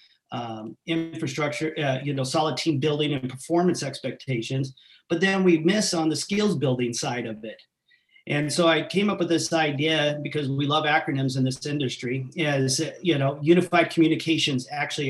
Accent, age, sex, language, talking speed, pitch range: American, 40-59, male, English, 170 wpm, 130-160 Hz